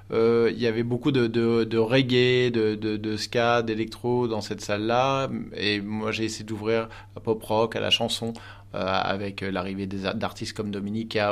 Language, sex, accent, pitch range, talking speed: French, male, French, 105-120 Hz, 190 wpm